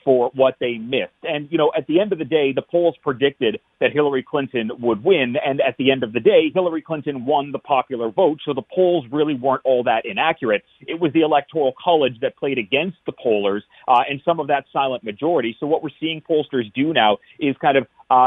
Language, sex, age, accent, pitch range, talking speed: English, male, 40-59, American, 125-155 Hz, 230 wpm